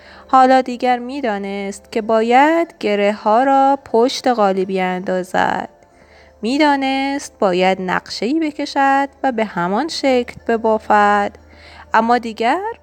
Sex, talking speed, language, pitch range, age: female, 105 wpm, Persian, 210-265 Hz, 20-39